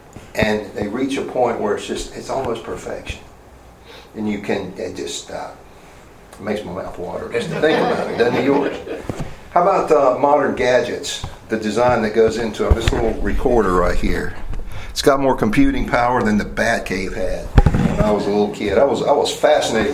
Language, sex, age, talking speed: English, male, 50-69, 195 wpm